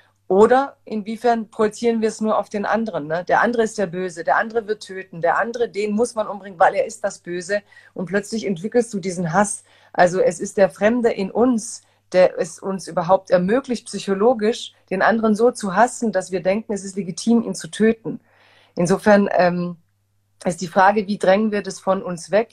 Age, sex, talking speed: 40-59, female, 200 wpm